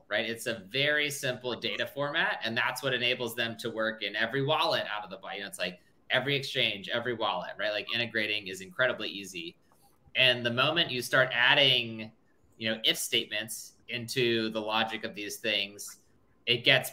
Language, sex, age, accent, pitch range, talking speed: English, male, 20-39, American, 110-130 Hz, 190 wpm